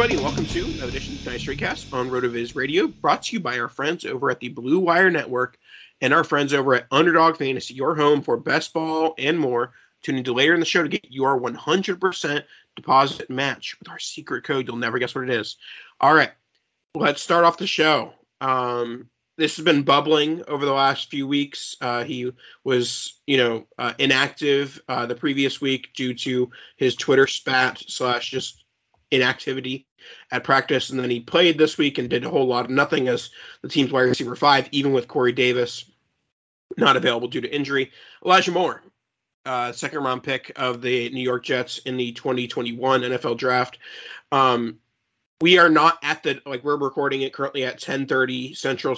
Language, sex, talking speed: English, male, 185 wpm